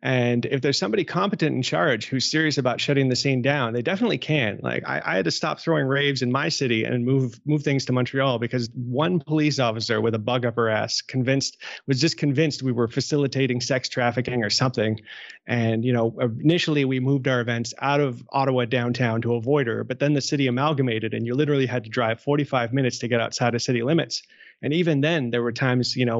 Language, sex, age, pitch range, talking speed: English, male, 30-49, 120-140 Hz, 220 wpm